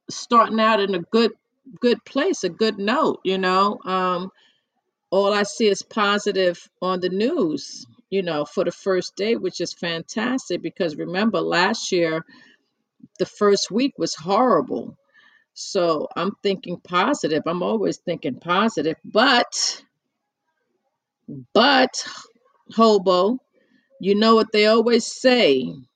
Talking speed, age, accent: 130 wpm, 40-59, American